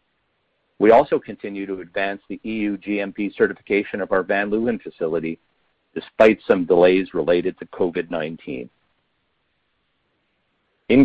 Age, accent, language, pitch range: 50-69, American, English, 95-125 Hz